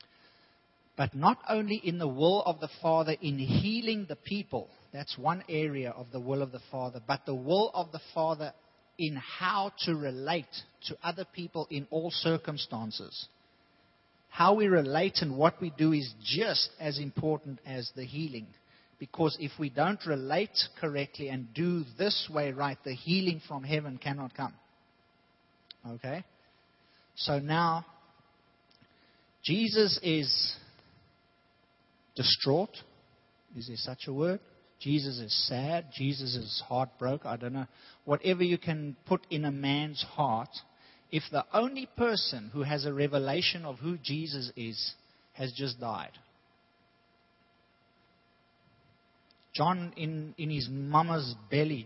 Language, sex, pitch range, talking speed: English, male, 125-165 Hz, 135 wpm